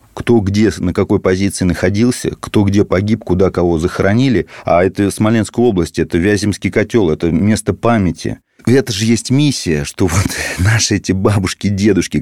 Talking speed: 155 wpm